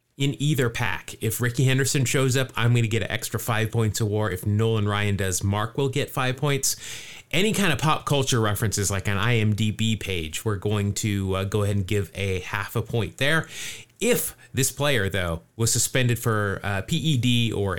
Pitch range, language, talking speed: 100-130 Hz, English, 200 wpm